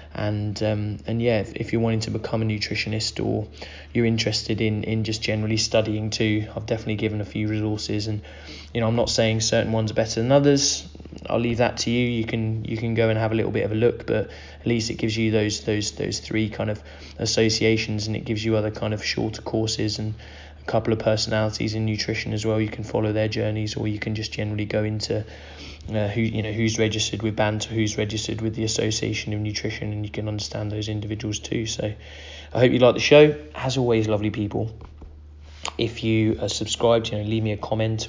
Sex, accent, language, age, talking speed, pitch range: male, British, English, 20-39, 225 wpm, 105-110 Hz